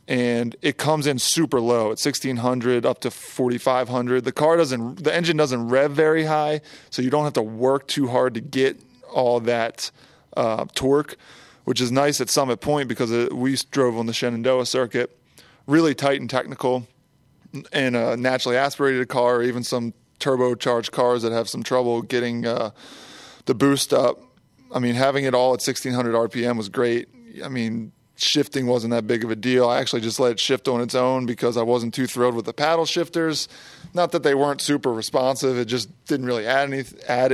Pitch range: 120-145 Hz